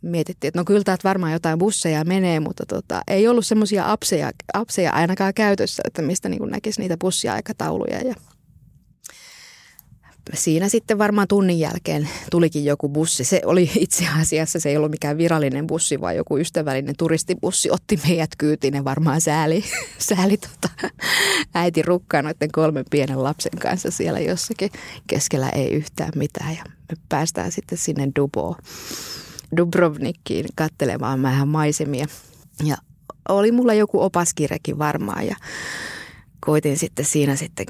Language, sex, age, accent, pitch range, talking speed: Finnish, female, 20-39, native, 145-175 Hz, 135 wpm